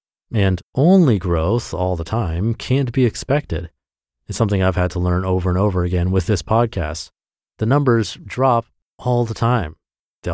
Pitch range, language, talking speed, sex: 90-120 Hz, English, 170 wpm, male